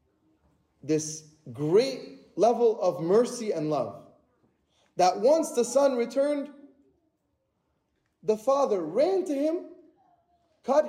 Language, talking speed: English, 100 wpm